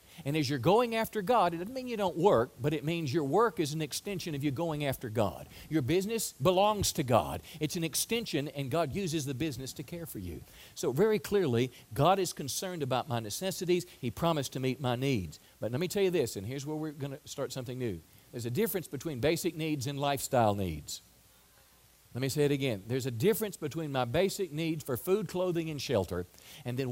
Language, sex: English, male